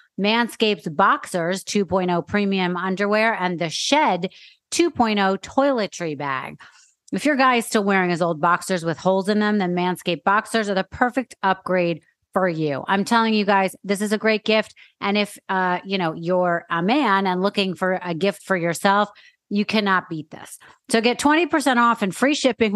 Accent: American